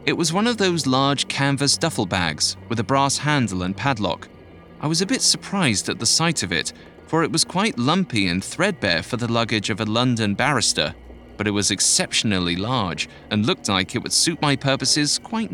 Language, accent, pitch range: English, British, 100-140 Hz